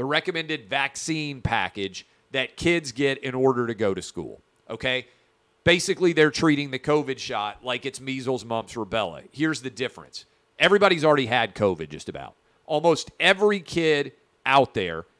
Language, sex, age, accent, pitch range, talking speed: English, male, 40-59, American, 125-165 Hz, 155 wpm